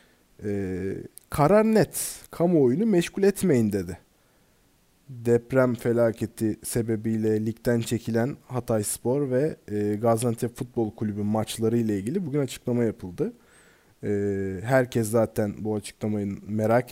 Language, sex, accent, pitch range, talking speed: Turkish, male, native, 110-155 Hz, 110 wpm